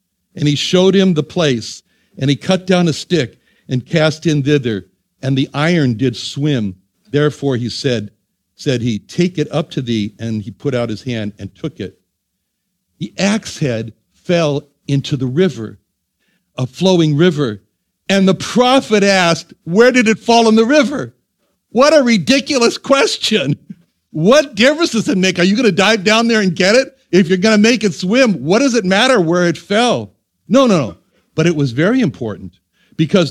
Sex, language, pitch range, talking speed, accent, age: male, English, 135-205 Hz, 185 wpm, American, 60-79